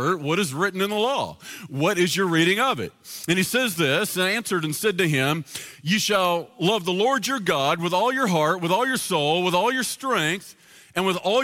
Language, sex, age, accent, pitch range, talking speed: English, male, 40-59, American, 165-210 Hz, 230 wpm